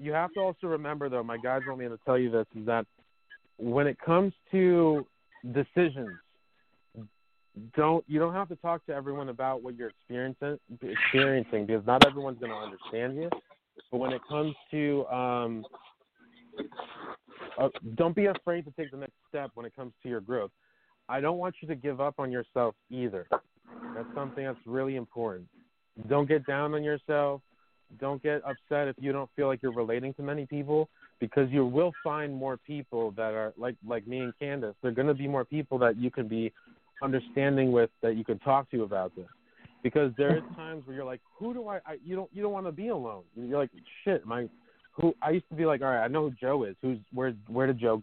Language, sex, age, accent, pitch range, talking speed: English, male, 30-49, American, 120-150 Hz, 210 wpm